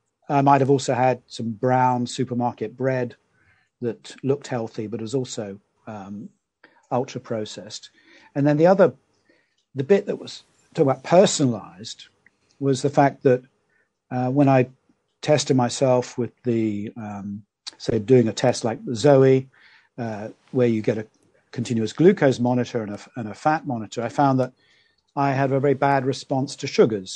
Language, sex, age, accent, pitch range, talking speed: English, male, 50-69, British, 115-140 Hz, 160 wpm